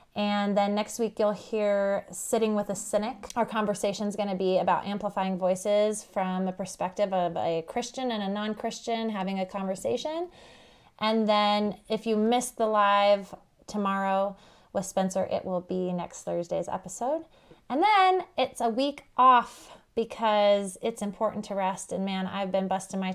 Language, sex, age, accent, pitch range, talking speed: English, female, 20-39, American, 185-215 Hz, 165 wpm